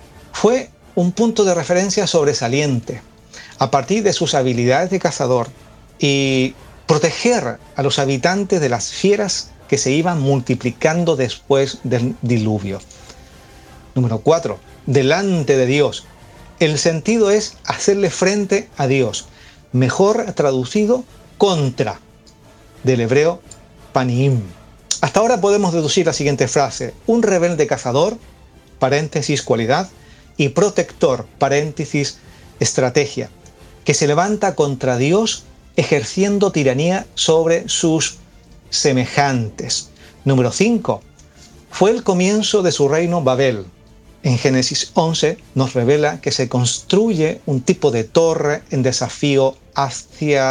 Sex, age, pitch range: male, 40-59, 125-175 Hz